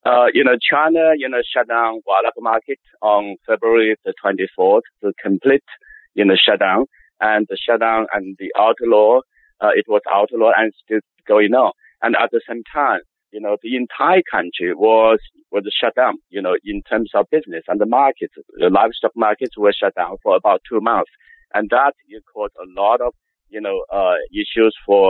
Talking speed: 185 wpm